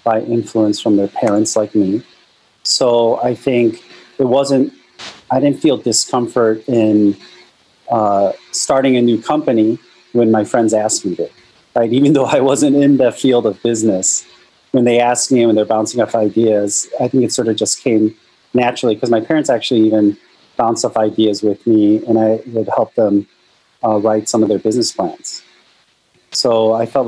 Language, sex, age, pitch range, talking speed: English, male, 30-49, 100-115 Hz, 175 wpm